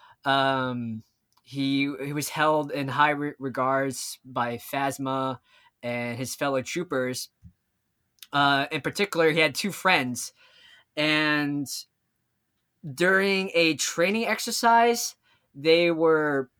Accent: American